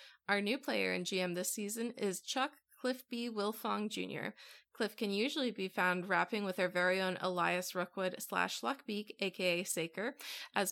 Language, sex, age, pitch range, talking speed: English, female, 20-39, 185-235 Hz, 170 wpm